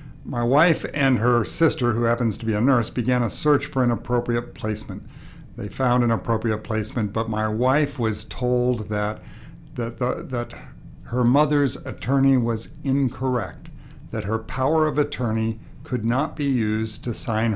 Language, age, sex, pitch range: English, 60-79, male, 105-135 Hz